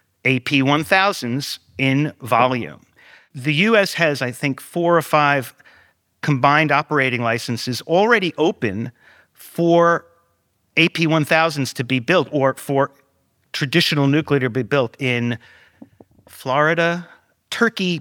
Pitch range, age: 140-175 Hz, 50-69